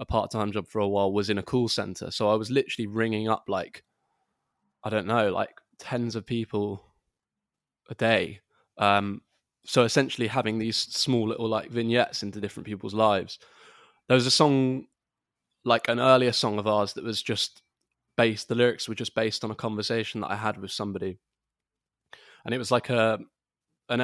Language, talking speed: English, 180 wpm